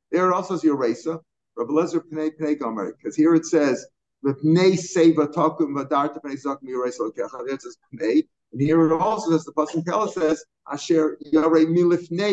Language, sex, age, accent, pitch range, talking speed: English, male, 50-69, American, 145-180 Hz, 180 wpm